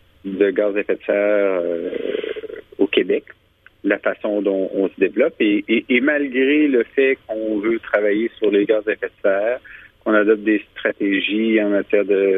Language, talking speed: French, 185 wpm